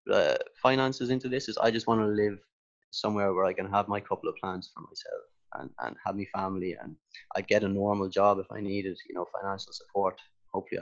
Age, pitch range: 20-39, 95-110 Hz